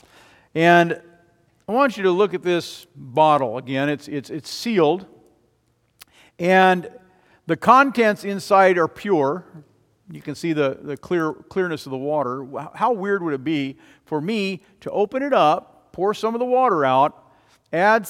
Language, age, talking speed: English, 50-69, 160 wpm